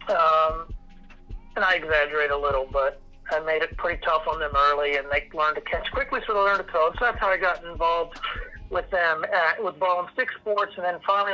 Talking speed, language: 230 wpm, English